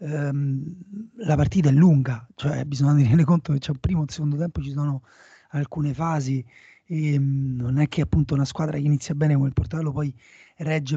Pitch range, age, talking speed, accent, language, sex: 145-180 Hz, 30-49, 195 wpm, native, Italian, male